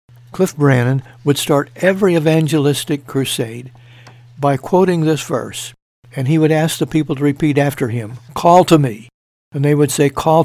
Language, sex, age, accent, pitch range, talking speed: English, male, 60-79, American, 125-155 Hz, 165 wpm